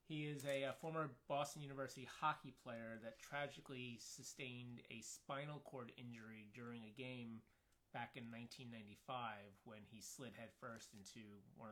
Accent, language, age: American, English, 30-49